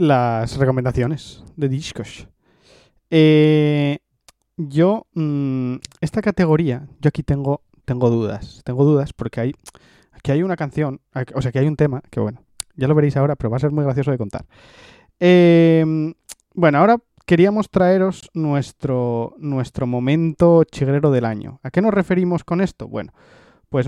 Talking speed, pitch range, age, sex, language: 155 wpm, 125-165 Hz, 20-39, male, Spanish